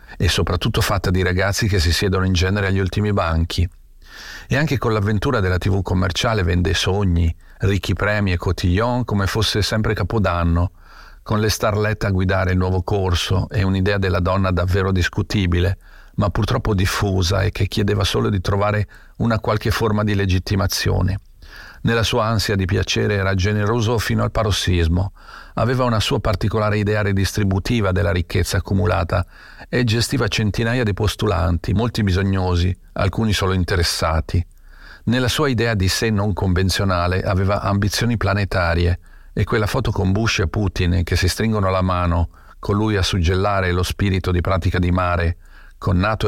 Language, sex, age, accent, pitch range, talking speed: Italian, male, 40-59, native, 90-105 Hz, 155 wpm